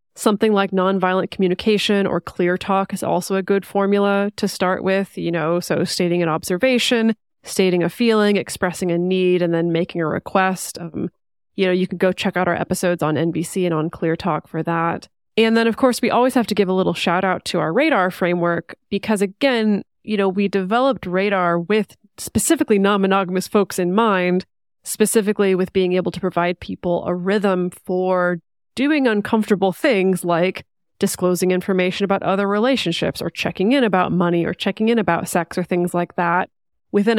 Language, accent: English, American